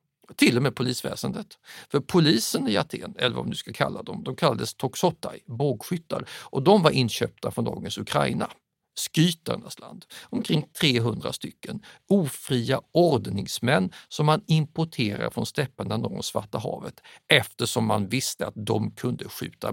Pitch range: 115-150 Hz